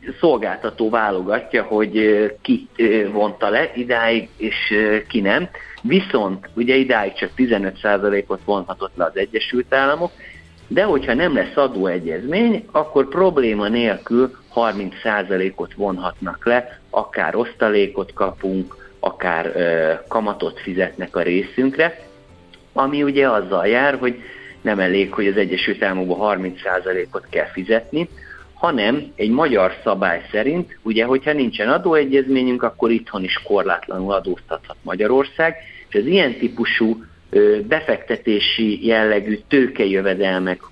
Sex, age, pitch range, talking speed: male, 50-69, 100-135 Hz, 110 wpm